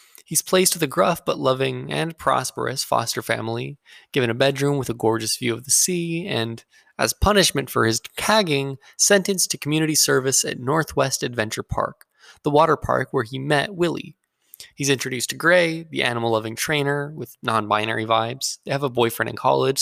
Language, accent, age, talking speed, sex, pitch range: English, American, 20-39, 175 wpm, male, 120-160 Hz